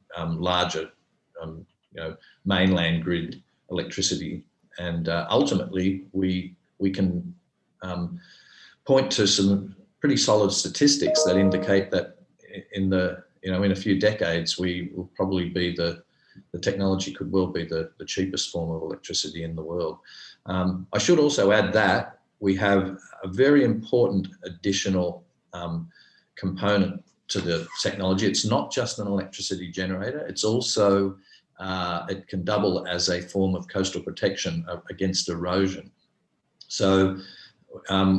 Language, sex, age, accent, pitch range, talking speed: English, male, 40-59, Australian, 90-100 Hz, 140 wpm